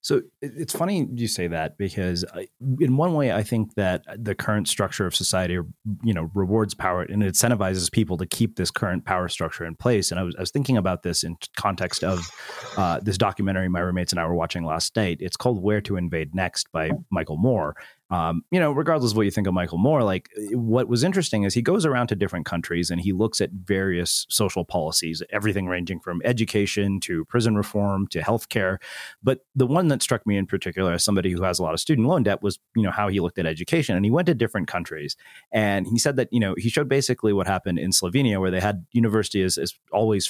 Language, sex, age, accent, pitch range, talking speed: English, male, 30-49, American, 95-125 Hz, 230 wpm